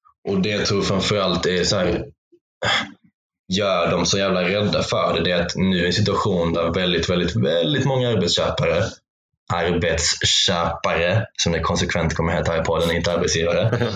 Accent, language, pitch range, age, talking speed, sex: native, Swedish, 85-120 Hz, 20-39, 175 wpm, male